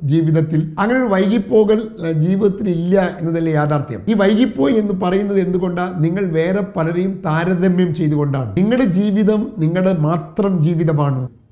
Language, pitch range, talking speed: Malayalam, 160-200 Hz, 120 wpm